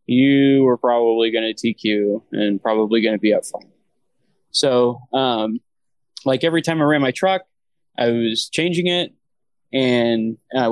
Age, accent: 20-39, American